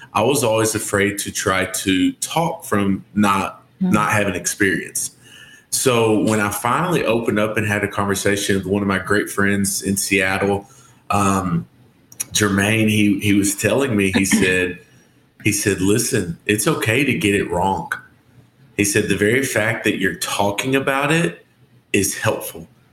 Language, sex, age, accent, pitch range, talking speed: English, male, 30-49, American, 100-115 Hz, 160 wpm